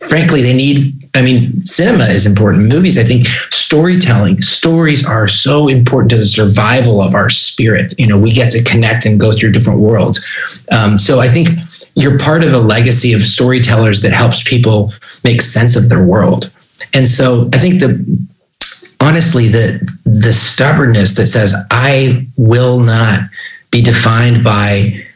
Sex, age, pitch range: male, 30-49, 115-140 Hz